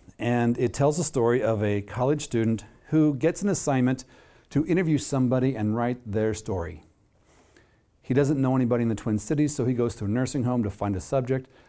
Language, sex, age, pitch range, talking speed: English, male, 50-69, 100-125 Hz, 200 wpm